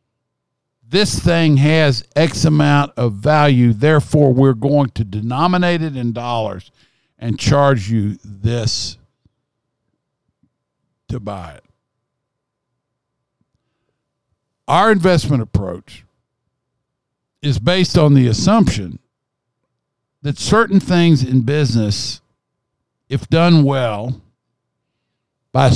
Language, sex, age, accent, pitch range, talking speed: English, male, 60-79, American, 115-150 Hz, 90 wpm